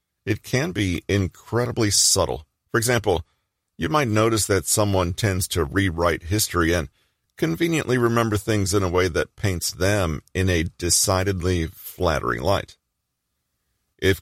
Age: 40-59